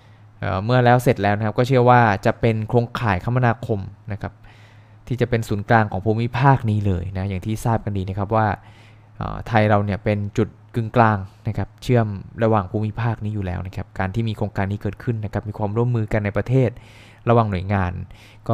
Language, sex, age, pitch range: Thai, male, 20-39, 105-115 Hz